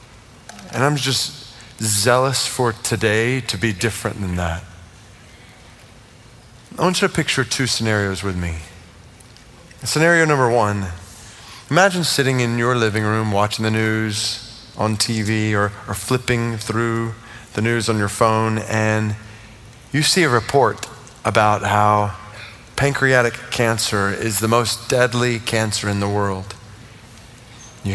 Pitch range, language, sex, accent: 105-125 Hz, English, male, American